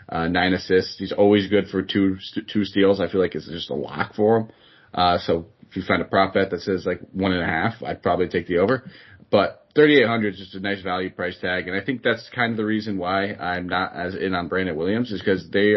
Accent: American